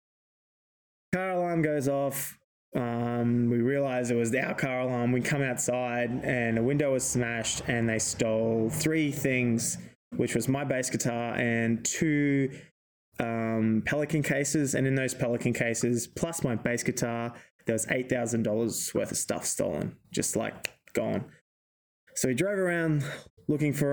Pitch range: 120-140 Hz